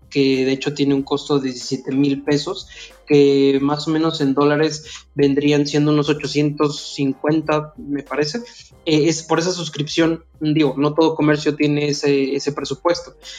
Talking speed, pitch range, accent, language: 155 wpm, 140-160 Hz, Mexican, Spanish